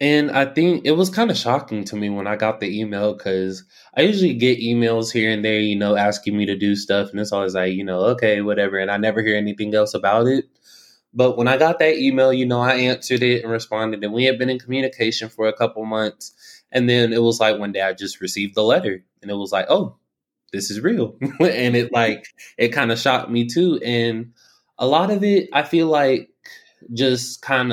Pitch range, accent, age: 105-125 Hz, American, 20-39